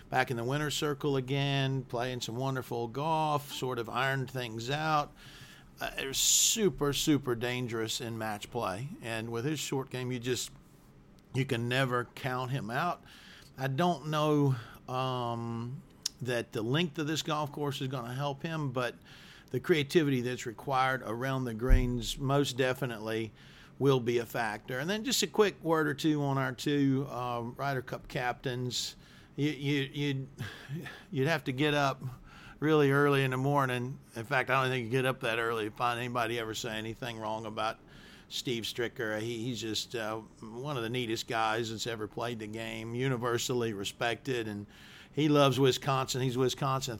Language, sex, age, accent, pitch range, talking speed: English, male, 50-69, American, 120-140 Hz, 170 wpm